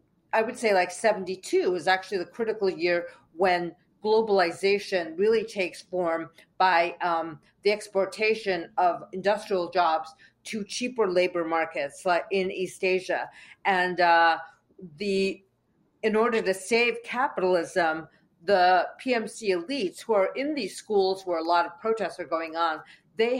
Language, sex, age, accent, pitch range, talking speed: English, female, 40-59, American, 170-205 Hz, 140 wpm